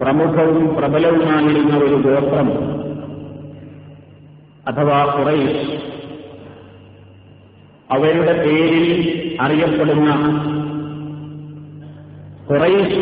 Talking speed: 45 wpm